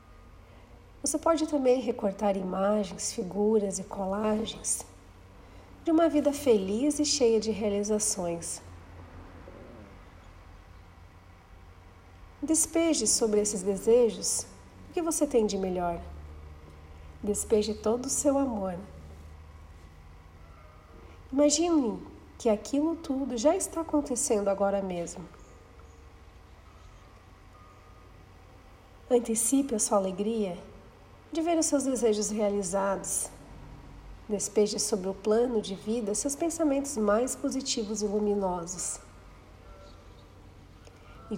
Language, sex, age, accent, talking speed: Portuguese, female, 40-59, Brazilian, 90 wpm